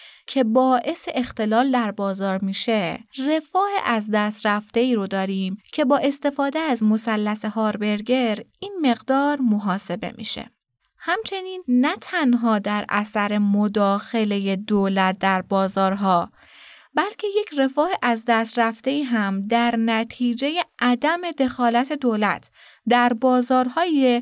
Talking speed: 115 wpm